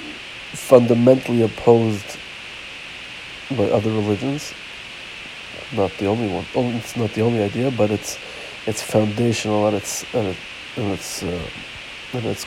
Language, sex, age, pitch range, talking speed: Hebrew, male, 60-79, 100-120 Hz, 130 wpm